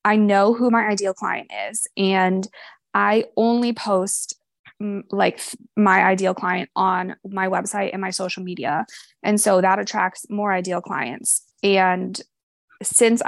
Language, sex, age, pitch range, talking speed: English, female, 20-39, 190-230 Hz, 140 wpm